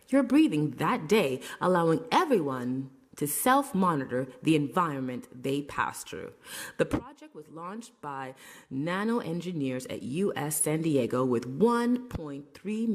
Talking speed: 115 wpm